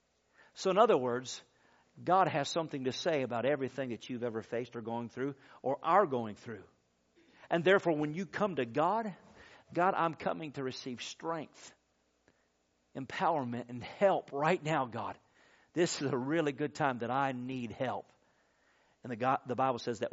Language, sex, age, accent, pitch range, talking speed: English, male, 50-69, American, 120-155 Hz, 170 wpm